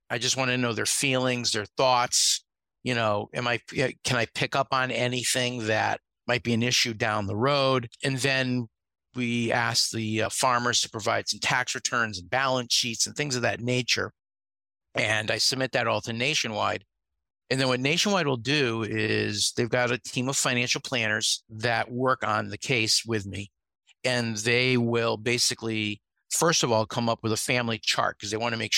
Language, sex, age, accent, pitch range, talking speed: English, male, 50-69, American, 105-130 Hz, 190 wpm